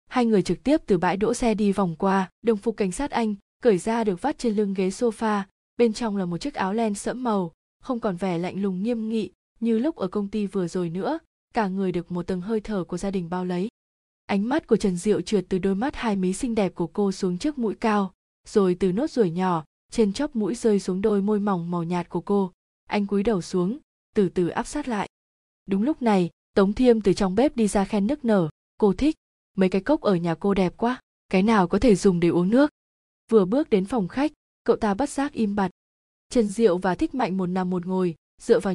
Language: Vietnamese